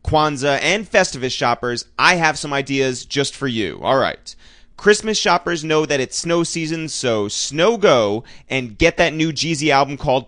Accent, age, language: American, 30-49, English